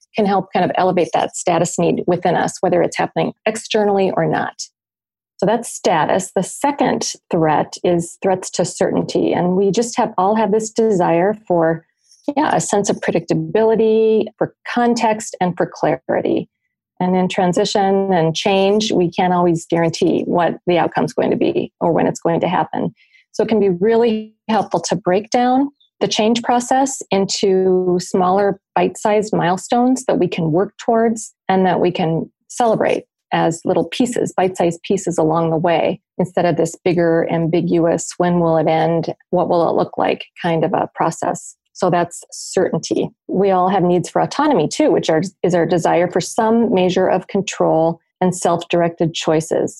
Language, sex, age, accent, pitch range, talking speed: English, female, 40-59, American, 175-225 Hz, 170 wpm